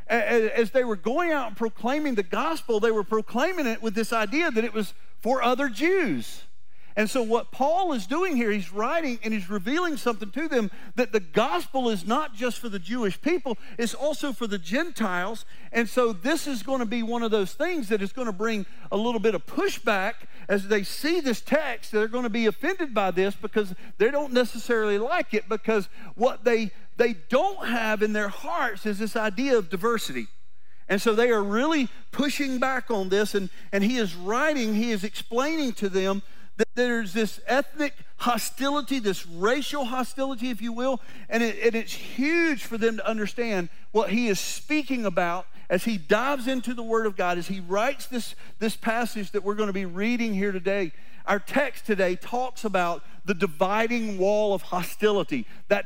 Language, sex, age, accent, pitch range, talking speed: English, male, 50-69, American, 200-245 Hz, 195 wpm